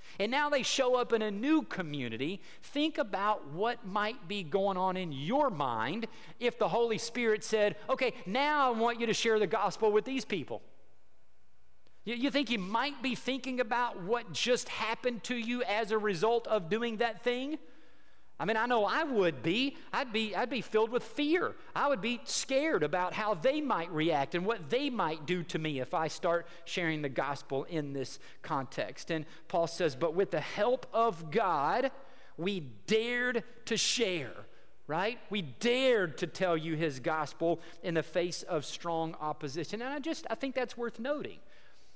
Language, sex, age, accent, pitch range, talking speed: English, male, 50-69, American, 165-245 Hz, 185 wpm